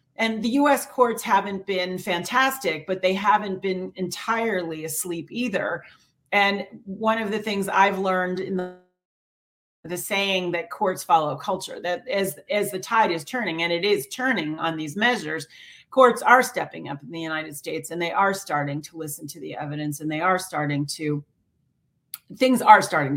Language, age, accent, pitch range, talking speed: English, 40-59, American, 165-215 Hz, 175 wpm